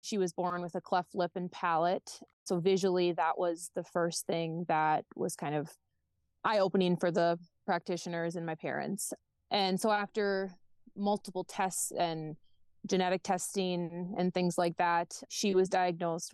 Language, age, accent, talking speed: English, 20-39, American, 160 wpm